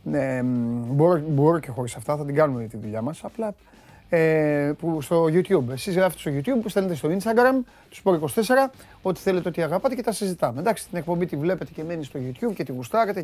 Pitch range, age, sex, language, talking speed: 130-190 Hz, 30-49, male, Greek, 215 wpm